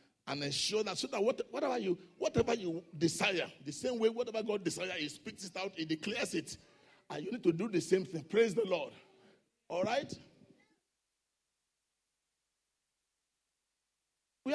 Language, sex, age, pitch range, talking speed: English, male, 50-69, 185-235 Hz, 155 wpm